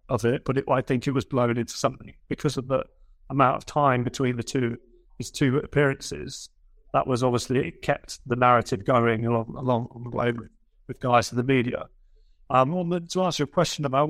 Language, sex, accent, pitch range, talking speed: English, male, British, 125-145 Hz, 190 wpm